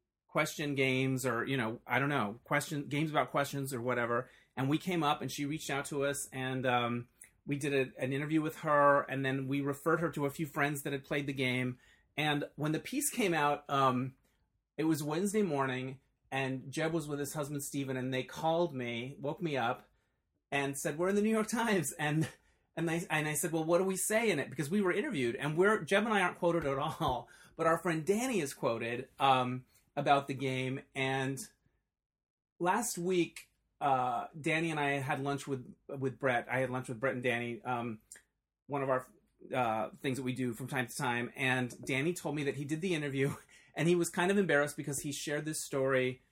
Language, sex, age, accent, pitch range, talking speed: English, male, 30-49, American, 130-155 Hz, 220 wpm